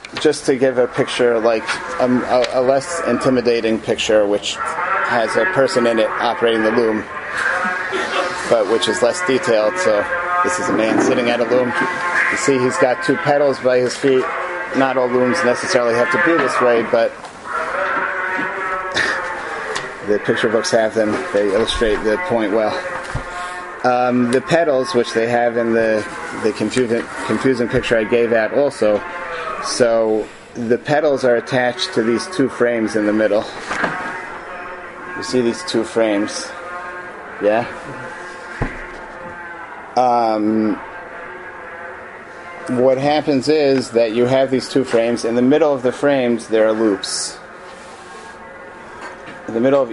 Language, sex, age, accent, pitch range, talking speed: English, male, 30-49, American, 115-150 Hz, 145 wpm